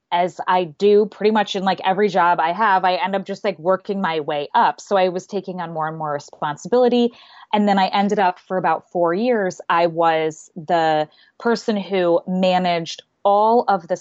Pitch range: 165-205 Hz